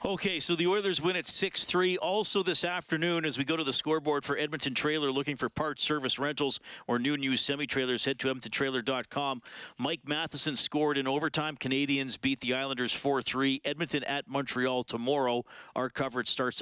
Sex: male